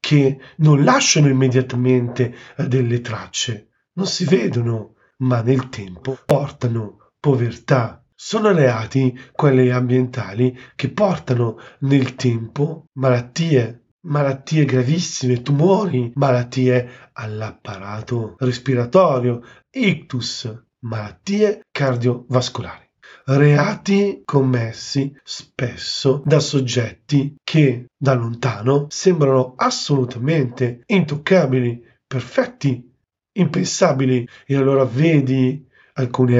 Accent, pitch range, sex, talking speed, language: native, 125-145 Hz, male, 80 wpm, Italian